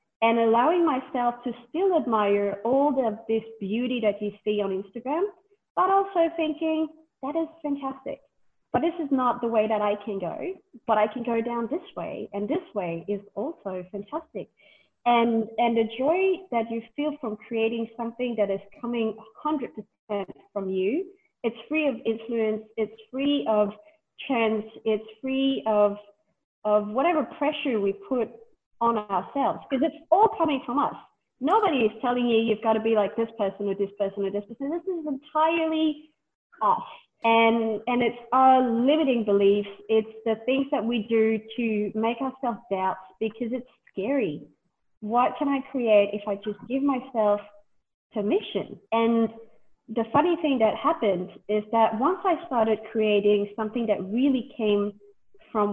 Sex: female